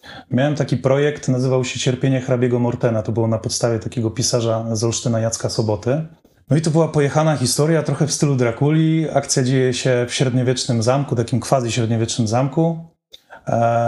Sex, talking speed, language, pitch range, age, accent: male, 170 wpm, Polish, 120-140 Hz, 30-49, native